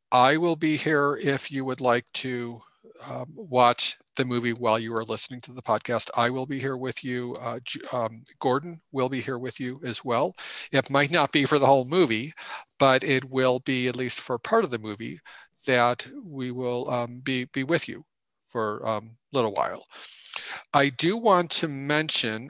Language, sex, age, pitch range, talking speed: English, male, 50-69, 120-140 Hz, 190 wpm